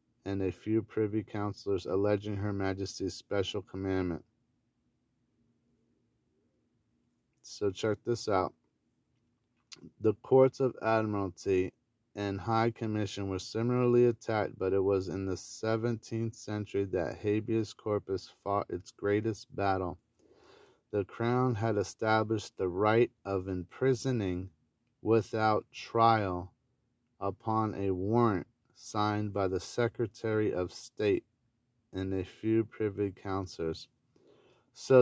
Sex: male